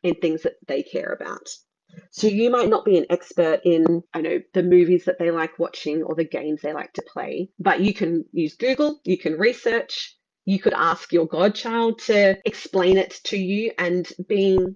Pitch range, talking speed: 175-230 Hz, 195 wpm